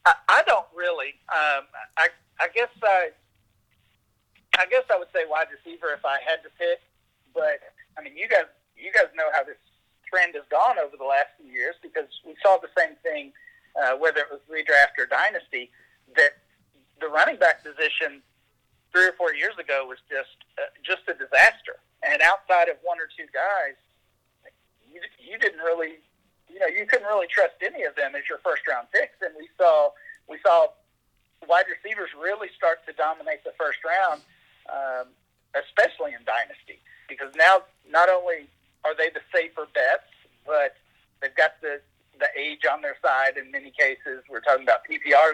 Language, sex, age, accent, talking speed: English, male, 40-59, American, 180 wpm